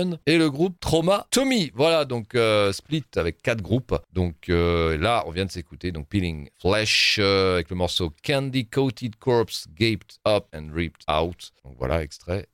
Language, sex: French, male